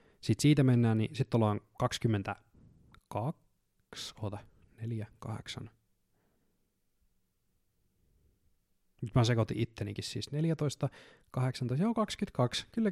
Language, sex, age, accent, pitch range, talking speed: Finnish, male, 20-39, native, 110-140 Hz, 90 wpm